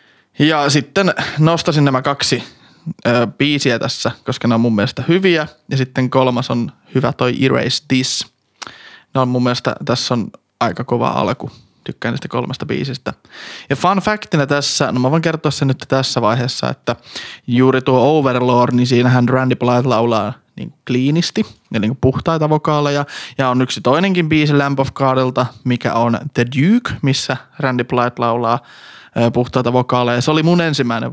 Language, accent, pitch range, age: Finnish, native, 125-160 Hz, 20-39